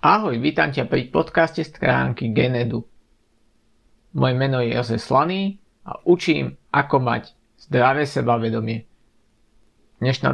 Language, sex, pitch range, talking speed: Slovak, male, 115-155 Hz, 110 wpm